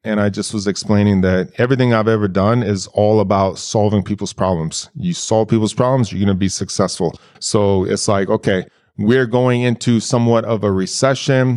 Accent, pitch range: American, 105-130 Hz